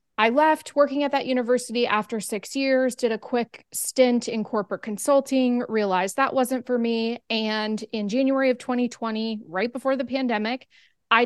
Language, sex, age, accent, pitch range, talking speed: English, female, 20-39, American, 205-240 Hz, 165 wpm